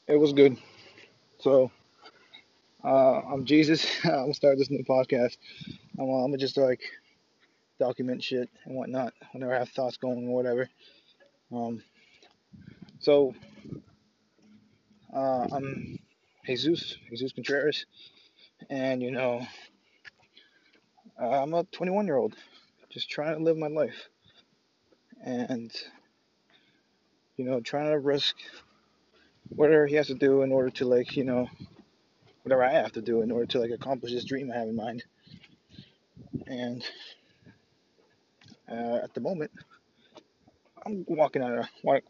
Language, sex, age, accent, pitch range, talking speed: English, male, 20-39, American, 120-140 Hz, 135 wpm